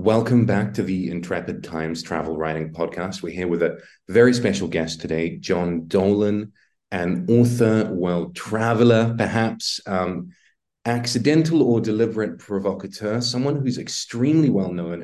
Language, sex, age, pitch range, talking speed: English, male, 30-49, 85-115 Hz, 130 wpm